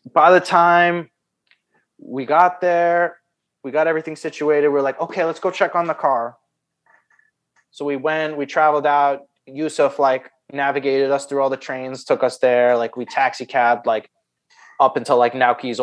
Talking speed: 170 wpm